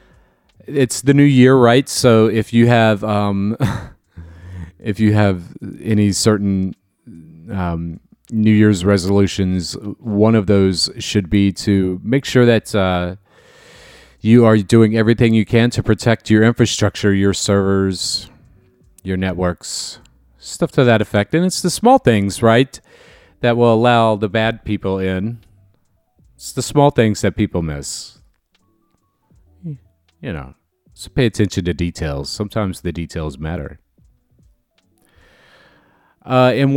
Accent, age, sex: American, 40-59, male